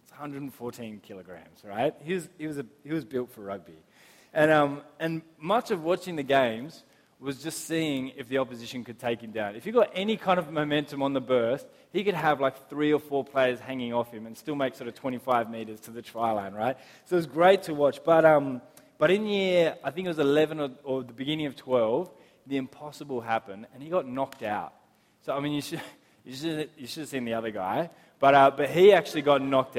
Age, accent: 20-39, Australian